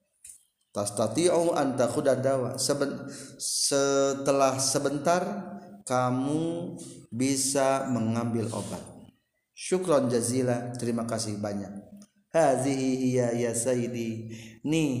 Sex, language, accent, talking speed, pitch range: male, Indonesian, native, 75 wpm, 120-150 Hz